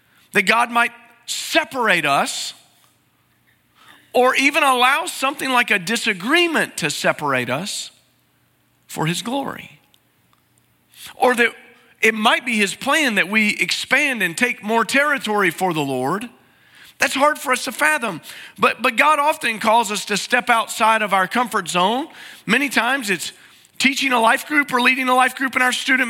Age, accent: 40-59, American